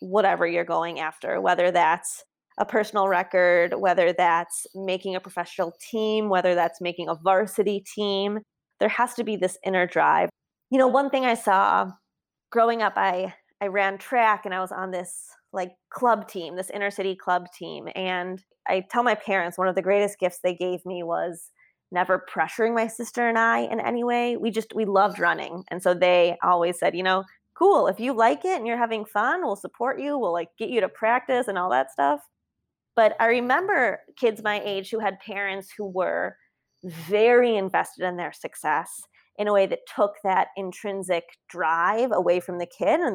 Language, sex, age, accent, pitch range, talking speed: English, female, 20-39, American, 180-220 Hz, 195 wpm